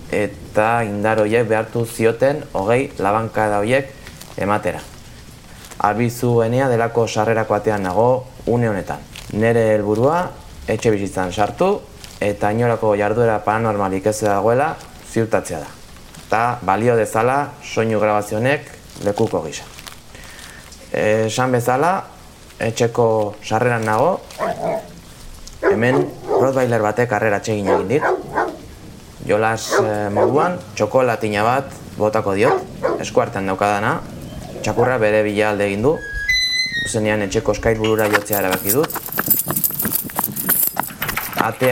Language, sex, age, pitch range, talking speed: English, male, 20-39, 105-120 Hz, 105 wpm